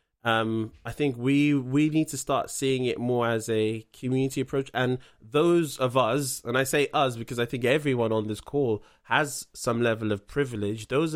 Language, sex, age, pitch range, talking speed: English, male, 20-39, 125-155 Hz, 190 wpm